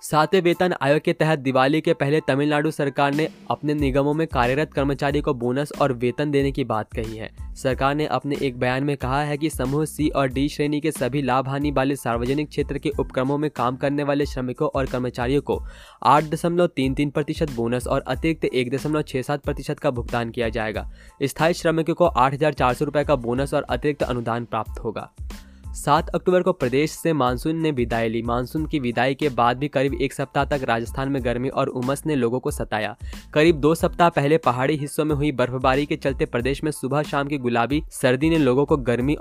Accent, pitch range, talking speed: native, 125-150 Hz, 195 wpm